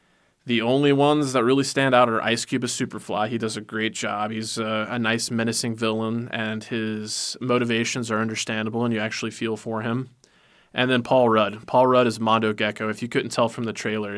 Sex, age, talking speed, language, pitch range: male, 20-39, 210 wpm, English, 110-125 Hz